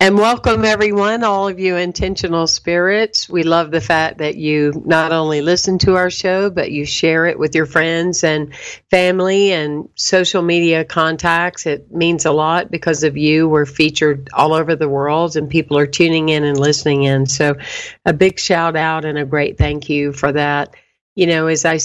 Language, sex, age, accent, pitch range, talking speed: English, female, 50-69, American, 150-180 Hz, 190 wpm